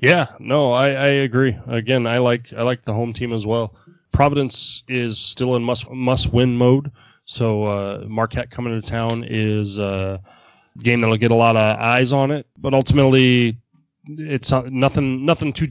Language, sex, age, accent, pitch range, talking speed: English, male, 20-39, American, 105-125 Hz, 175 wpm